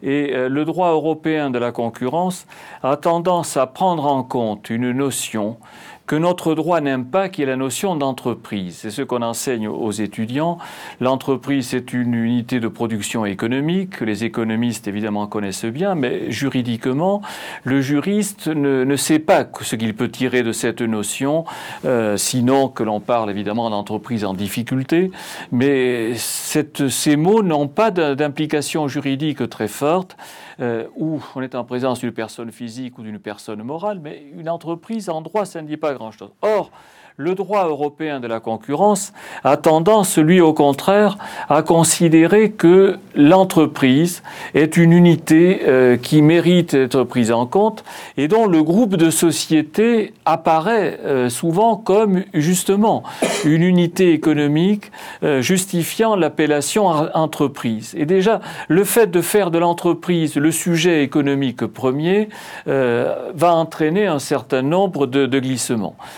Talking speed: 150 wpm